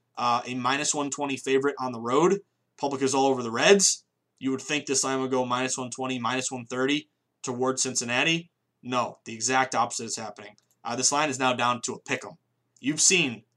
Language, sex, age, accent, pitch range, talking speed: English, male, 20-39, American, 120-145 Hz, 195 wpm